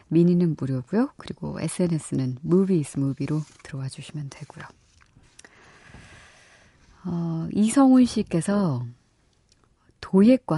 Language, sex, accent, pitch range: Korean, female, native, 140-200 Hz